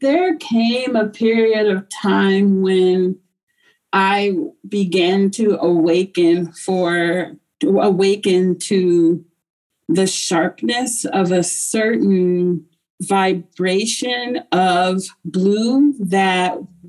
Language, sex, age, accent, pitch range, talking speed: English, female, 30-49, American, 180-205 Hz, 85 wpm